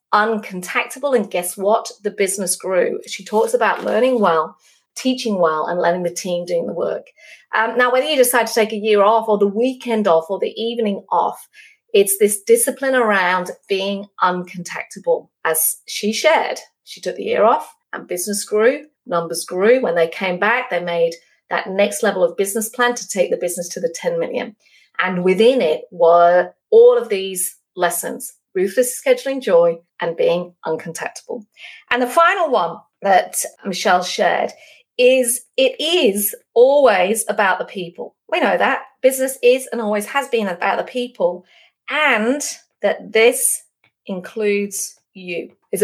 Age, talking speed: 30-49, 160 wpm